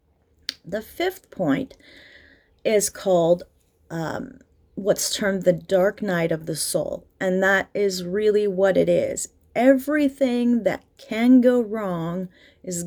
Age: 30-49